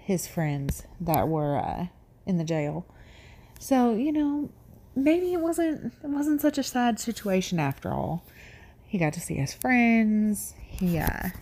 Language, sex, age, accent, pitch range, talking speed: English, female, 30-49, American, 160-220 Hz, 150 wpm